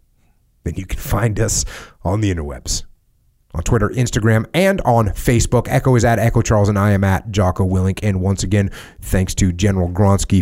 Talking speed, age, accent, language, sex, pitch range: 185 wpm, 30-49, American, English, male, 85-105 Hz